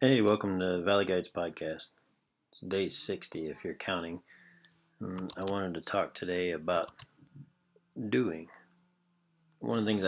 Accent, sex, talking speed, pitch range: American, male, 145 wpm, 85-135 Hz